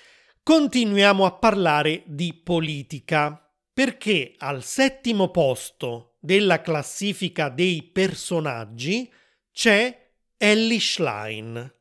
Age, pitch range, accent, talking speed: 30-49, 150-210 Hz, native, 80 wpm